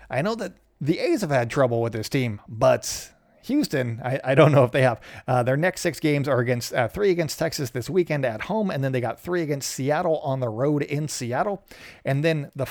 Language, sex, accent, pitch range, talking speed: English, male, American, 125-165 Hz, 235 wpm